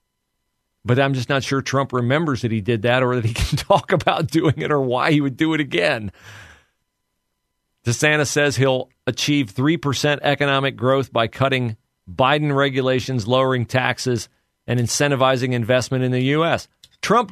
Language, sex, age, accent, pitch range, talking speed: English, male, 40-59, American, 115-145 Hz, 160 wpm